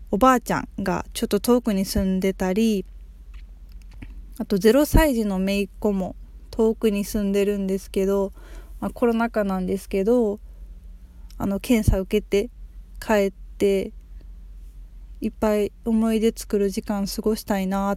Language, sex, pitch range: Japanese, female, 185-230 Hz